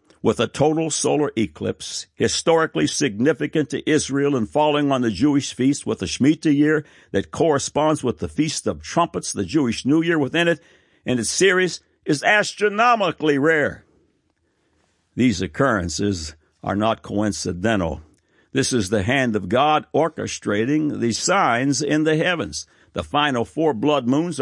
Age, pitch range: 60-79, 105-155 Hz